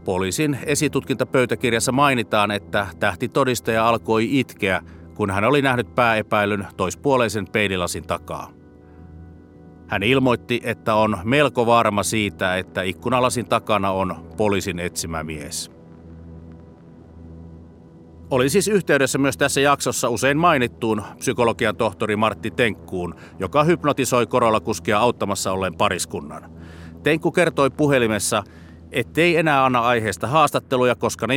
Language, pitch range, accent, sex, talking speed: Finnish, 85-130 Hz, native, male, 110 wpm